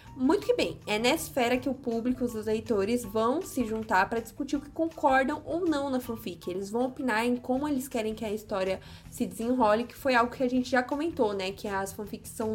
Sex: female